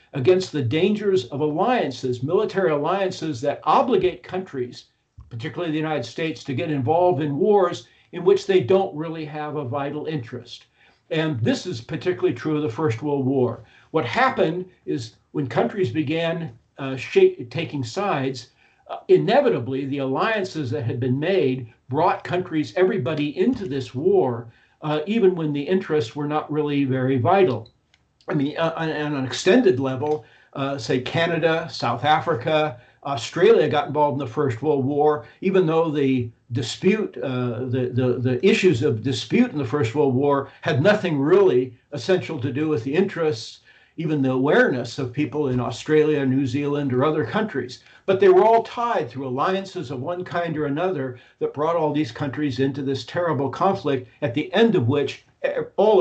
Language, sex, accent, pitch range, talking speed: English, male, American, 130-175 Hz, 165 wpm